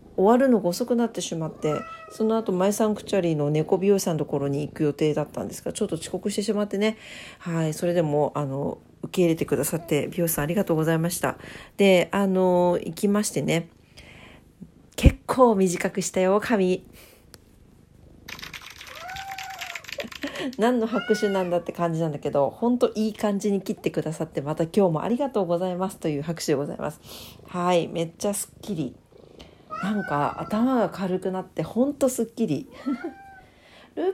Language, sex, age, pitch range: Japanese, female, 40-59, 170-250 Hz